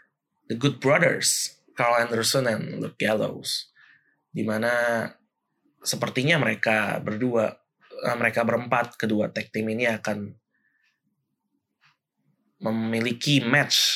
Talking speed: 90 wpm